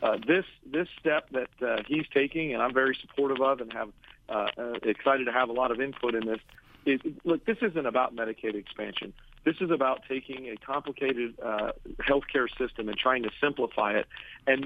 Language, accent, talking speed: English, American, 195 wpm